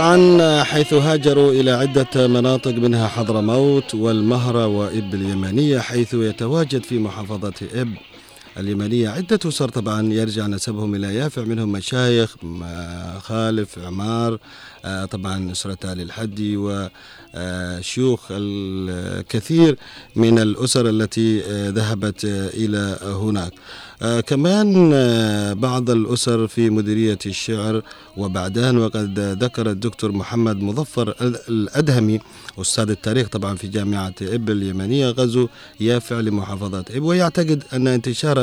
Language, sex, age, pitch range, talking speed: Arabic, male, 40-59, 100-125 Hz, 105 wpm